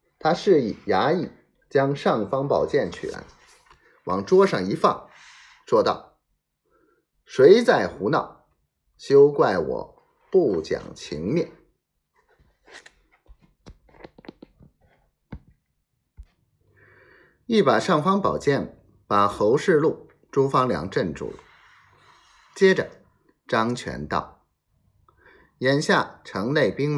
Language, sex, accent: Chinese, male, native